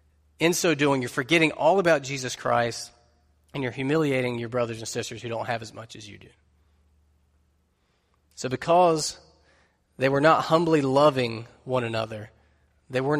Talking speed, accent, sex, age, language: 160 wpm, American, male, 30-49, English